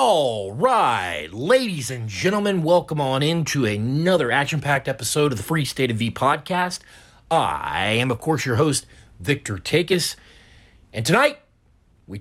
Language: English